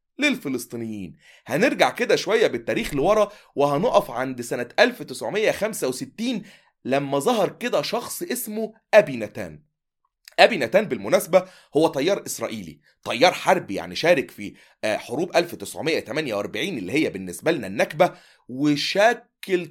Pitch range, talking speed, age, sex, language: 145-220 Hz, 110 wpm, 30-49, male, Arabic